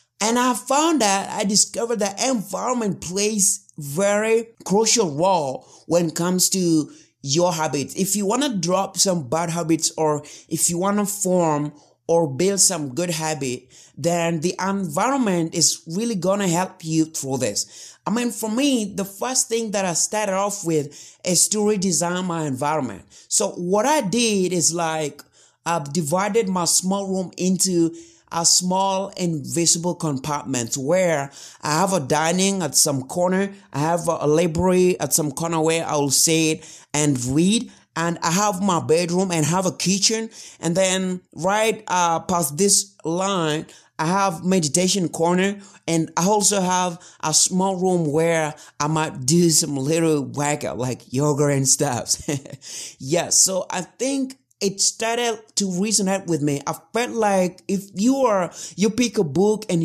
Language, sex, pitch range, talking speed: English, male, 160-195 Hz, 160 wpm